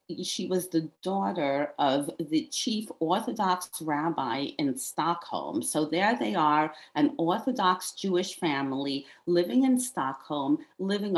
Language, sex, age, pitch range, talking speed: English, female, 40-59, 175-280 Hz, 125 wpm